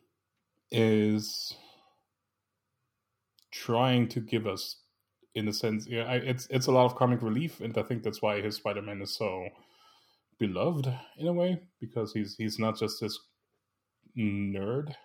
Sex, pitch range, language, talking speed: male, 105-125 Hz, English, 145 wpm